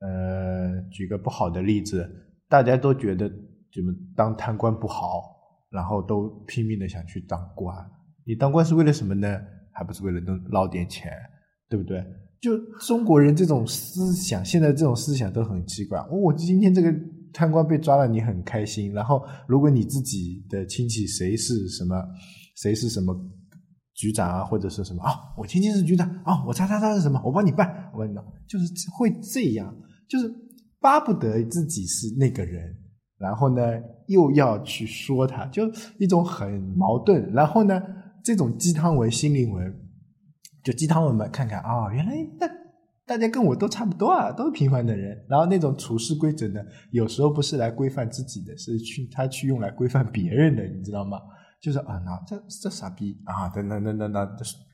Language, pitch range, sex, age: Chinese, 100-165 Hz, male, 20-39